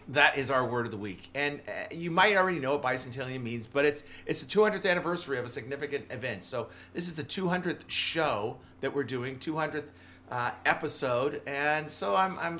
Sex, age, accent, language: male, 40-59, American, English